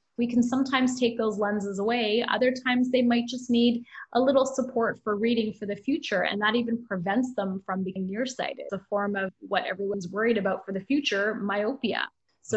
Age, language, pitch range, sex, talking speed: 20-39, English, 200-245 Hz, female, 200 wpm